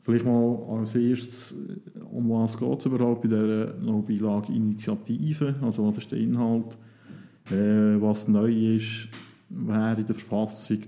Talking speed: 145 wpm